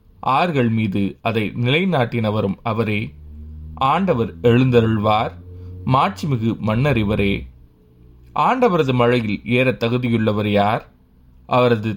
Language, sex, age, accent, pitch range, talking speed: Tamil, male, 20-39, native, 105-125 Hz, 80 wpm